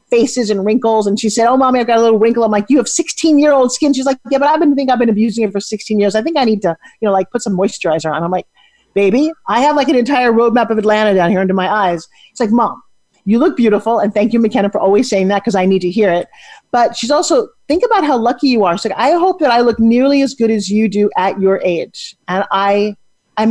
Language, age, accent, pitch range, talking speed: English, 40-59, American, 200-265 Hz, 285 wpm